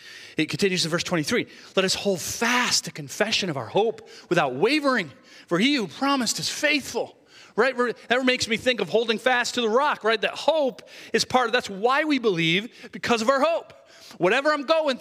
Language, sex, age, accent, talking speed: English, male, 40-59, American, 200 wpm